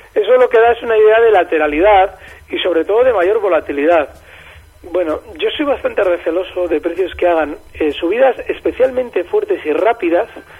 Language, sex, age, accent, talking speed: Spanish, male, 40-59, Spanish, 170 wpm